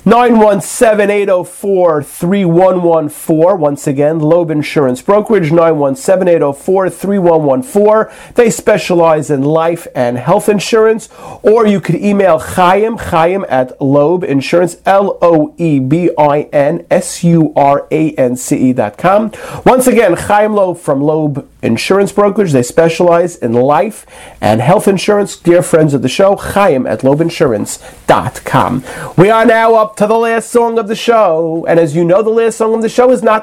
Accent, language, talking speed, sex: American, English, 125 wpm, male